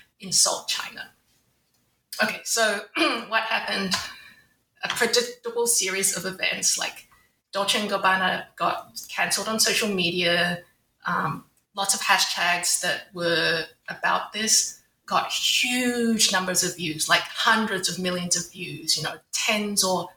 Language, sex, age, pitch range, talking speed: English, female, 20-39, 180-220 Hz, 130 wpm